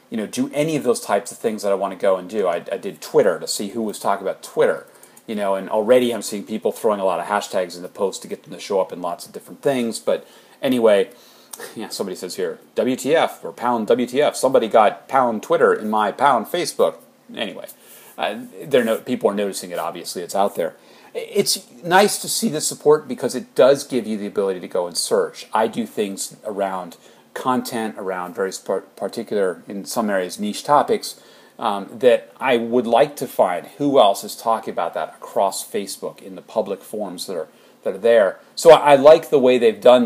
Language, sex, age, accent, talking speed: English, male, 30-49, American, 215 wpm